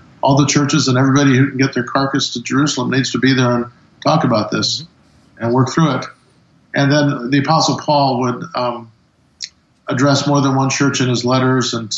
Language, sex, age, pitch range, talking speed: English, male, 50-69, 120-140 Hz, 200 wpm